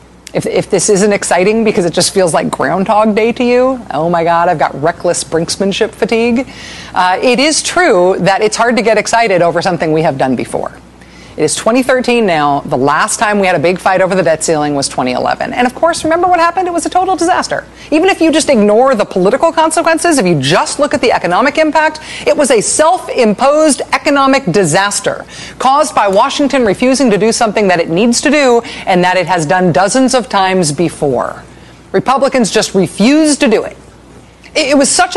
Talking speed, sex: 205 wpm, female